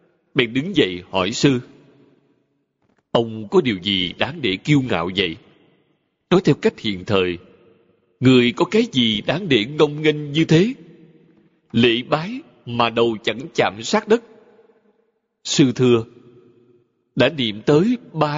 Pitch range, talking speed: 120-155 Hz, 140 wpm